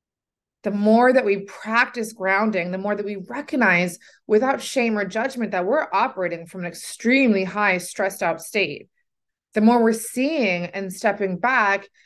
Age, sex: 20-39, female